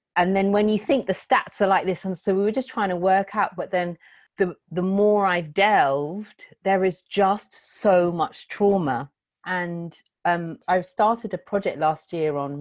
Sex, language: female, English